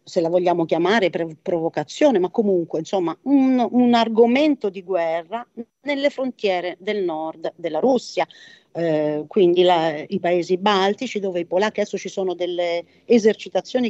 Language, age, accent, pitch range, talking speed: Italian, 40-59, native, 175-230 Hz, 145 wpm